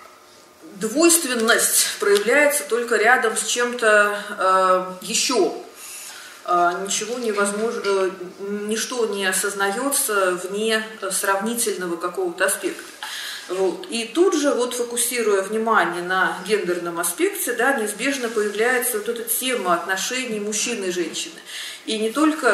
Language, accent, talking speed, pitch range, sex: Russian, native, 100 wpm, 200-290 Hz, female